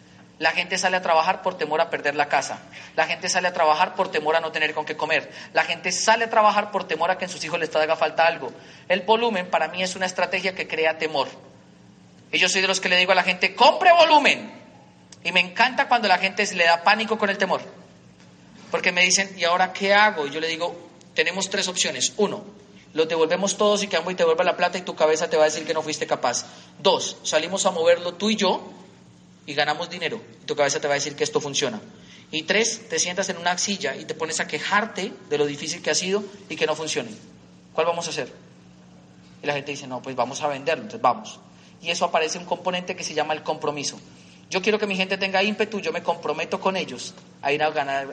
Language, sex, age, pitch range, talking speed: Spanish, male, 30-49, 155-195 Hz, 245 wpm